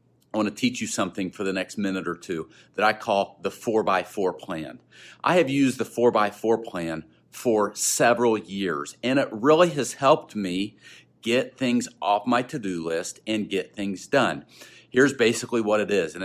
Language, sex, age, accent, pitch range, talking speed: English, male, 40-59, American, 100-125 Hz, 190 wpm